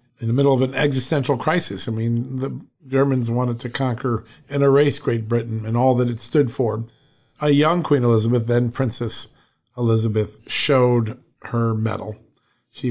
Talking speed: 165 wpm